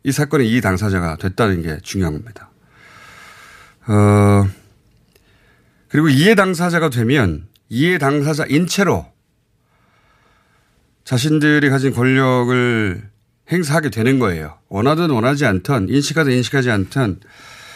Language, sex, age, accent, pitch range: Korean, male, 40-59, native, 110-155 Hz